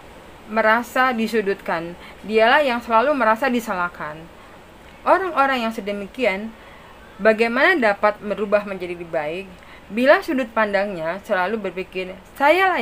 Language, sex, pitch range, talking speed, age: Indonesian, female, 175-225 Hz, 105 wpm, 30-49